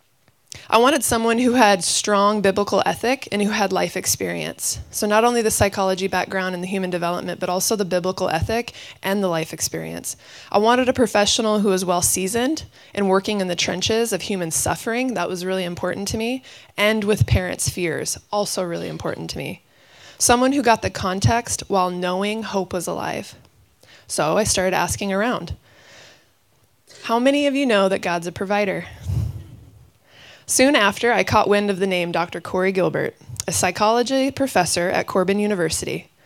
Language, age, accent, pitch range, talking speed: English, 20-39, American, 180-220 Hz, 170 wpm